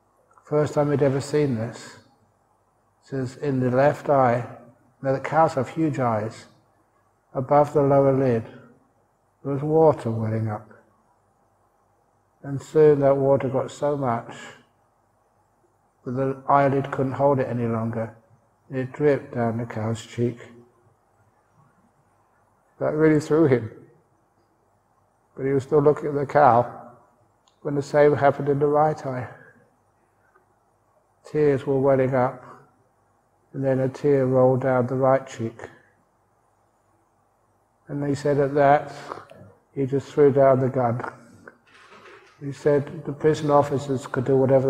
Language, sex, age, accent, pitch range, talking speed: English, male, 60-79, British, 120-145 Hz, 135 wpm